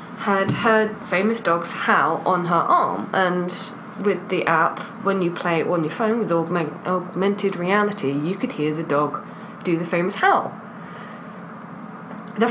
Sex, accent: female, British